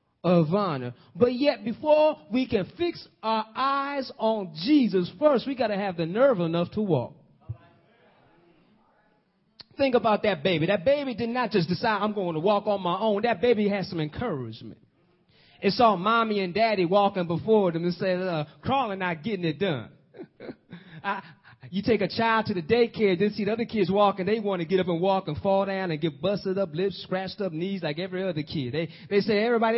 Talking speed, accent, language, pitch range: 200 wpm, American, English, 170-225 Hz